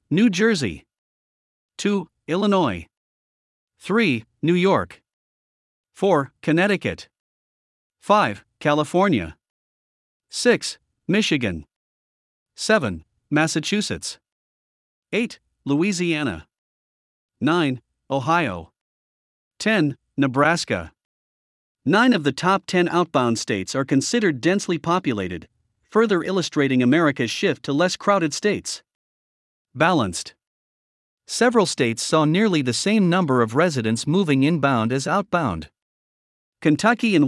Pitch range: 120-180 Hz